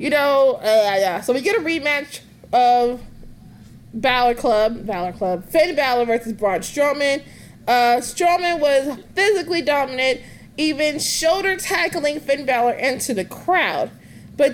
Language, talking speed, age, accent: English, 135 wpm, 20-39, American